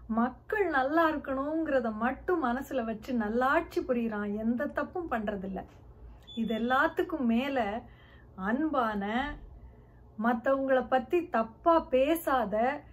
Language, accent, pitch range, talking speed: Tamil, native, 235-335 Hz, 60 wpm